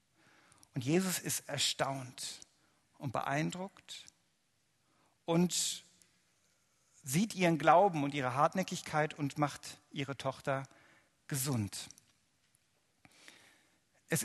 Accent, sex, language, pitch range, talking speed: German, male, German, 150-225 Hz, 80 wpm